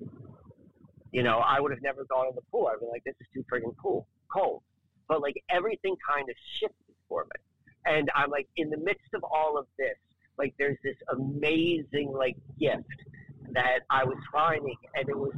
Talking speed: 195 wpm